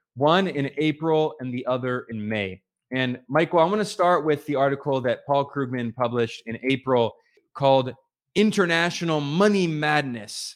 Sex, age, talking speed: male, 20-39, 155 wpm